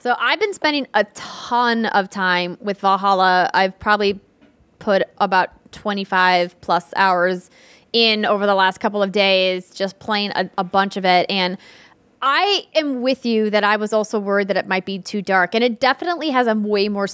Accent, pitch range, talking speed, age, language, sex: American, 195-255 Hz, 190 wpm, 20-39, English, female